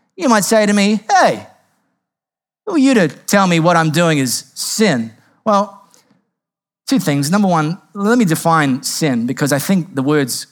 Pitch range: 170-230 Hz